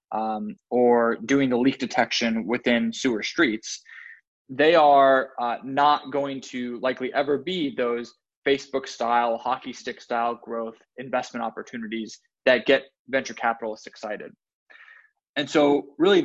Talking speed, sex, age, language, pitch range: 130 wpm, male, 20-39, English, 120-140 Hz